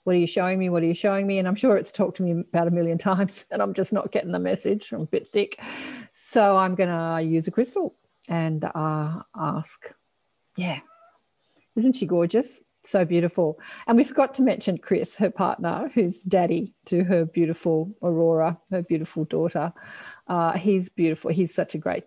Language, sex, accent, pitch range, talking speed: English, female, Australian, 165-195 Hz, 195 wpm